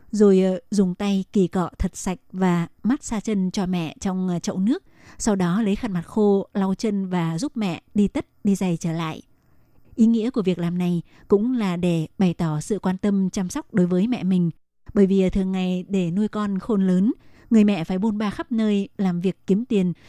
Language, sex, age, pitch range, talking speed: Vietnamese, female, 20-39, 180-215 Hz, 220 wpm